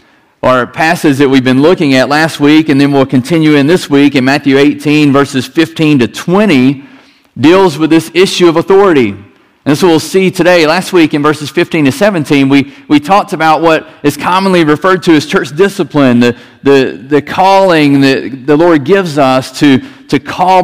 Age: 40-59